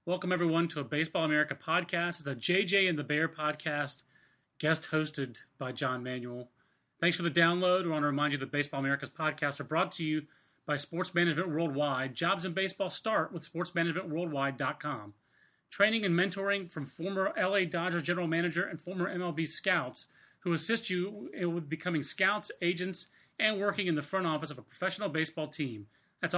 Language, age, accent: English, 30-49, American